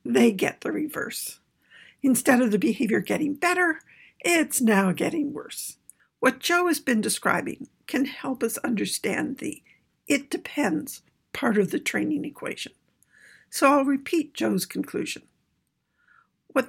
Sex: female